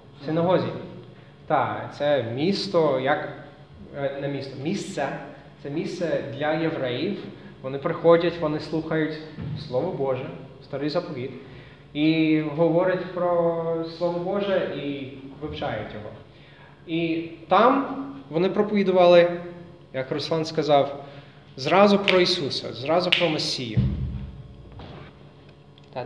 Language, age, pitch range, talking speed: Ukrainian, 20-39, 135-170 Hz, 95 wpm